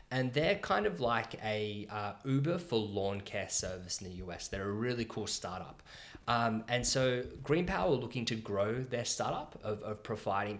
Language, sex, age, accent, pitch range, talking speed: English, male, 20-39, Australian, 100-125 Hz, 185 wpm